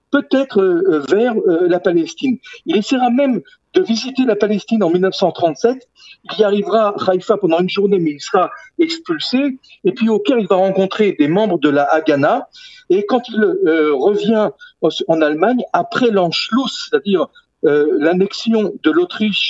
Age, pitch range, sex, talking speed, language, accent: 50-69, 180-265 Hz, male, 155 wpm, French, French